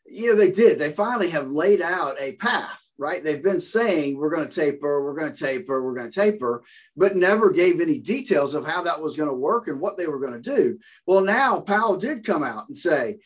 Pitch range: 150-215 Hz